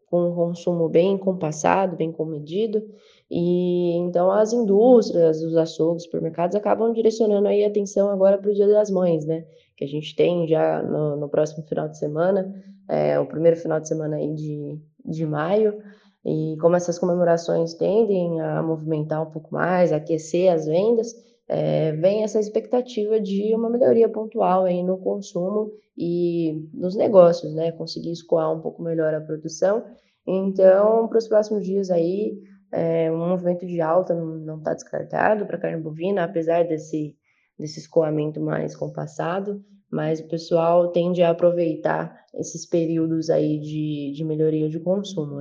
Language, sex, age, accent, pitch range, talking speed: Portuguese, female, 20-39, Brazilian, 160-200 Hz, 160 wpm